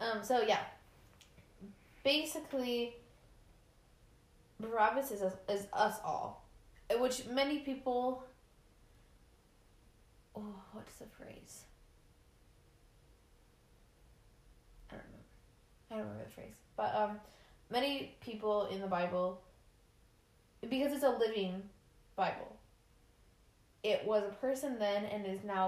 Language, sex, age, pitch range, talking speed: English, female, 20-39, 180-215 Hz, 105 wpm